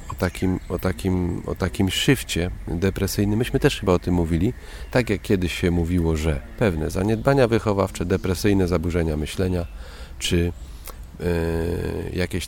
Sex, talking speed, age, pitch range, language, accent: male, 120 wpm, 40-59, 85-105 Hz, Polish, native